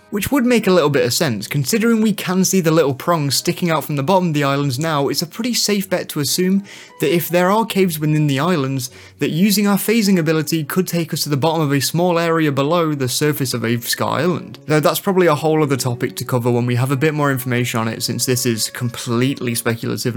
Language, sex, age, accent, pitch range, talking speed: English, male, 20-39, British, 130-180 Hz, 250 wpm